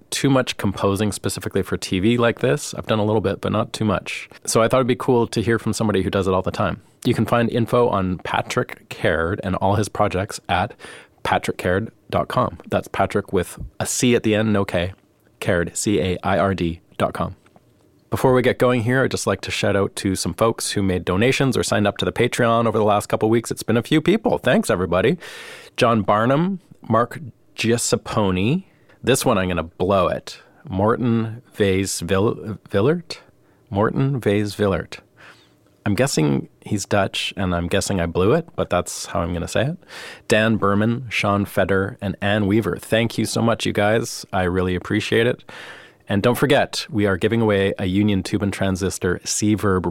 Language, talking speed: English, 190 wpm